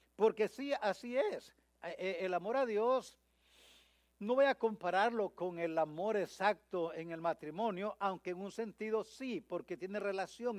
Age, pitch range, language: 60-79, 165-225 Hz, English